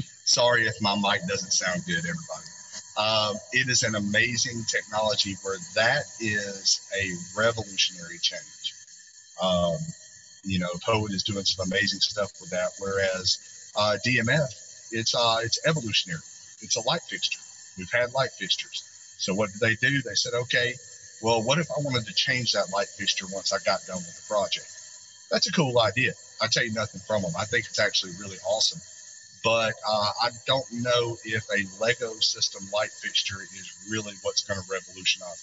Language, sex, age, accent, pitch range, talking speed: English, male, 40-59, American, 100-120 Hz, 180 wpm